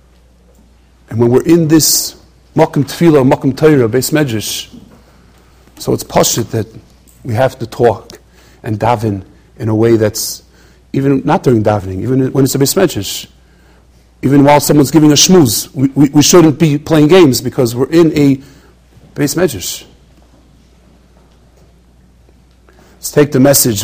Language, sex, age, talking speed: English, male, 50-69, 145 wpm